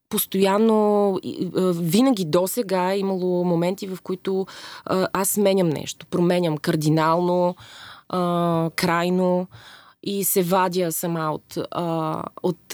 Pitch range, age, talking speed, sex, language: 165-190 Hz, 20-39, 115 wpm, female, Bulgarian